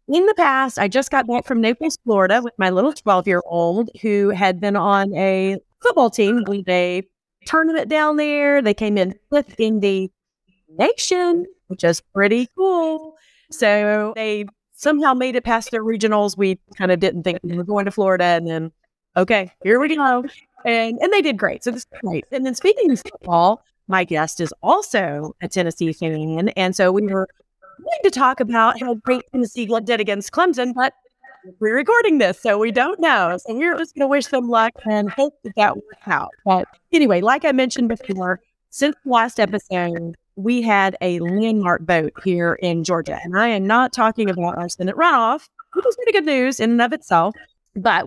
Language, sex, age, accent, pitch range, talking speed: English, female, 30-49, American, 185-260 Hz, 195 wpm